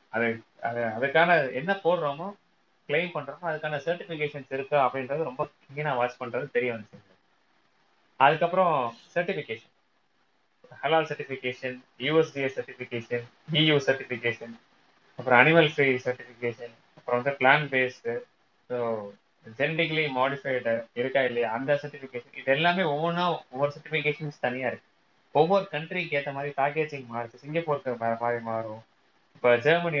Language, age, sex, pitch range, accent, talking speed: Tamil, 20-39, male, 125-155 Hz, native, 80 wpm